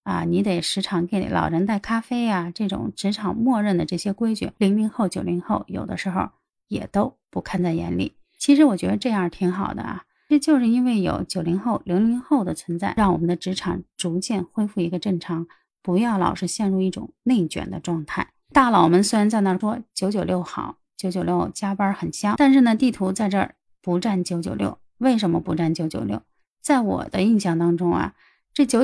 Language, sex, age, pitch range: Chinese, female, 30-49, 180-225 Hz